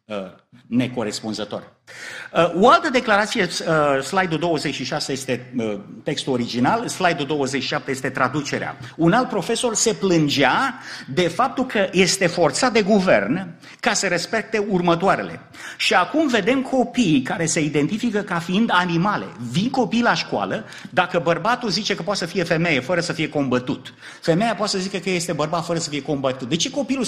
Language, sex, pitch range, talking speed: Romanian, male, 160-235 Hz, 155 wpm